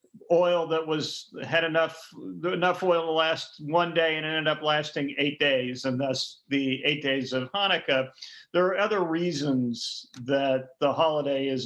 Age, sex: 50-69, male